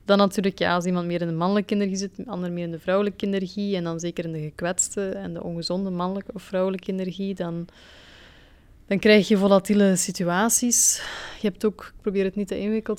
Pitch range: 180-210 Hz